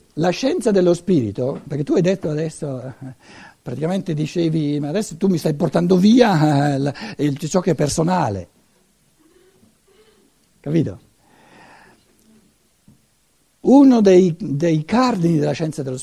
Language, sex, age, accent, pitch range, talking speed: Italian, male, 60-79, native, 150-220 Hz, 110 wpm